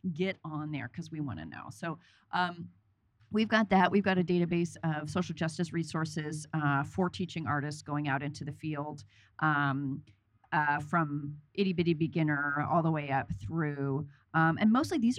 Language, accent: English, American